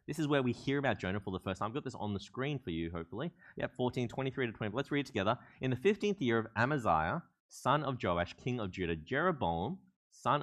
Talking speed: 245 wpm